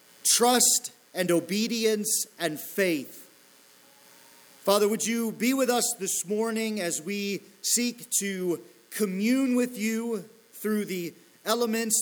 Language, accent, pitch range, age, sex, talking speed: English, American, 170-230 Hz, 40-59, male, 115 wpm